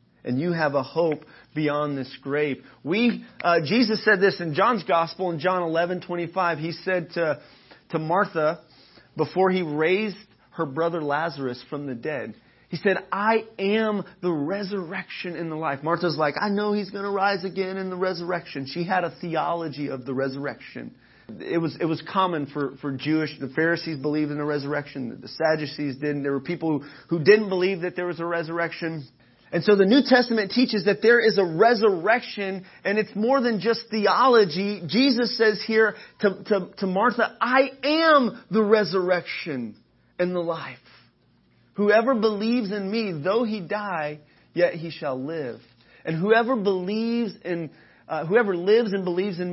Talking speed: 175 wpm